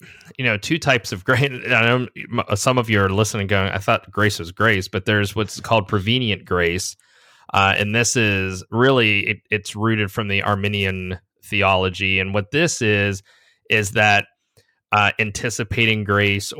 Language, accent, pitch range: English, American, 100-115 Hz